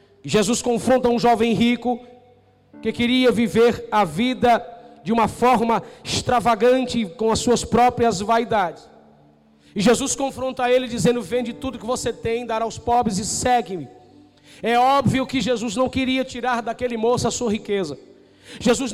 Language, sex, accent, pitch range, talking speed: Portuguese, male, Brazilian, 200-245 Hz, 150 wpm